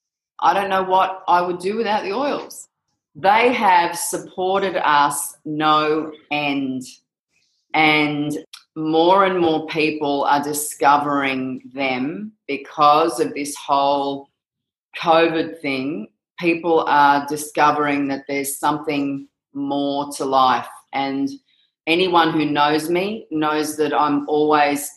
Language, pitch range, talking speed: English, 145-165 Hz, 115 wpm